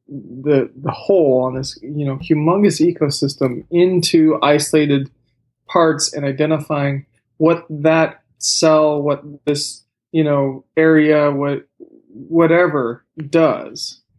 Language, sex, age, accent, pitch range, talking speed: English, male, 20-39, American, 145-175 Hz, 105 wpm